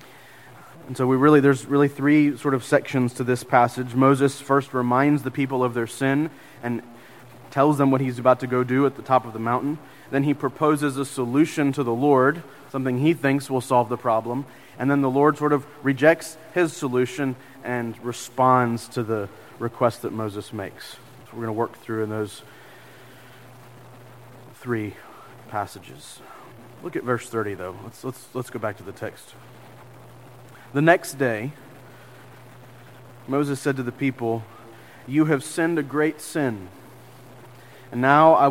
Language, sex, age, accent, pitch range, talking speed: English, male, 30-49, American, 120-140 Hz, 170 wpm